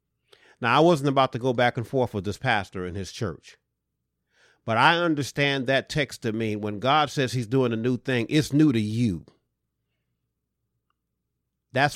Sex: male